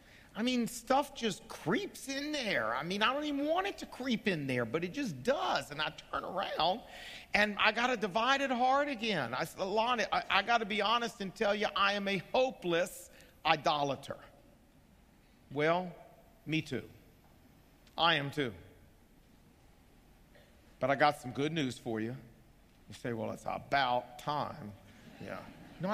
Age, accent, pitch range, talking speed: 50-69, American, 140-200 Hz, 165 wpm